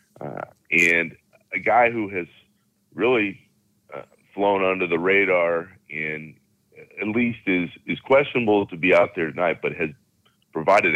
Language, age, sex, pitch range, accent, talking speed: English, 40-59, male, 85-105 Hz, American, 140 wpm